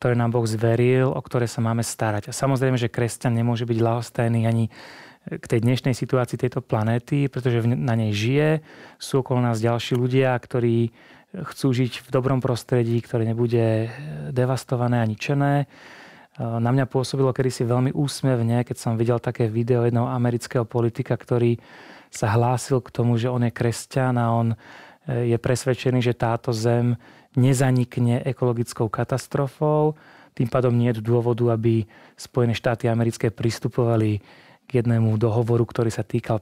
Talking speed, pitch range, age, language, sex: 150 wpm, 115-130 Hz, 30-49, Czech, male